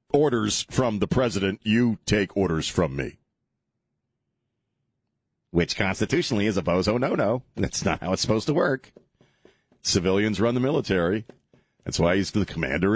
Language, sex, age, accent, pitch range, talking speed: English, male, 40-59, American, 90-110 Hz, 150 wpm